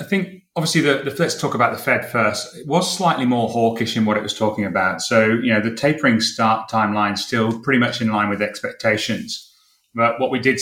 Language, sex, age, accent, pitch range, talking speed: English, male, 30-49, British, 110-130 Hz, 225 wpm